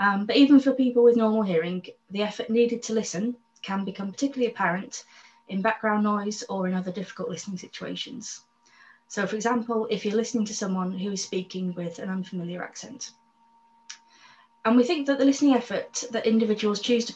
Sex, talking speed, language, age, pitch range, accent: female, 180 wpm, English, 20-39, 185-235 Hz, British